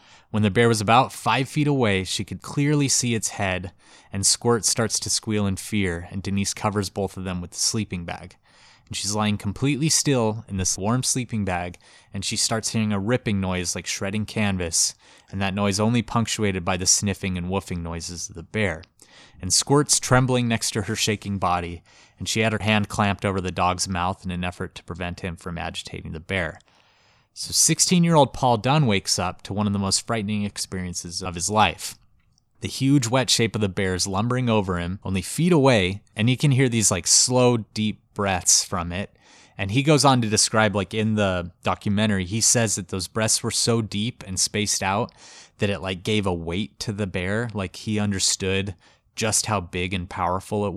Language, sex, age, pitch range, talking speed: English, male, 20-39, 95-115 Hz, 205 wpm